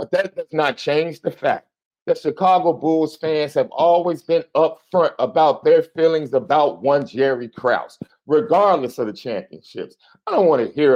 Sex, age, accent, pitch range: male, 50-69, American, 185-260 Hz